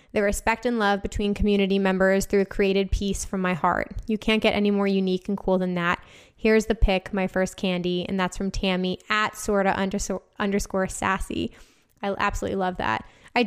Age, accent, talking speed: 10-29, American, 195 wpm